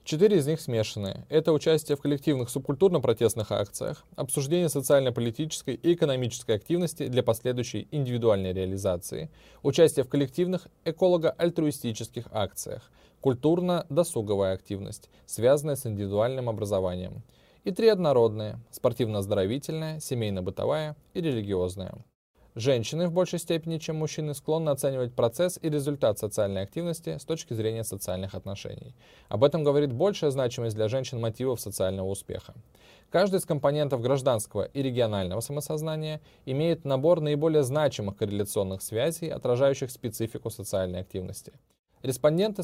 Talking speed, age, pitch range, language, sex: 115 wpm, 20-39, 110-155 Hz, Russian, male